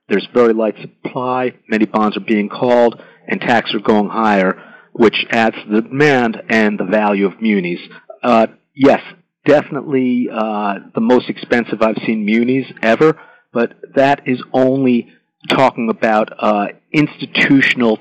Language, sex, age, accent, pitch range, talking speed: English, male, 50-69, American, 105-125 Hz, 145 wpm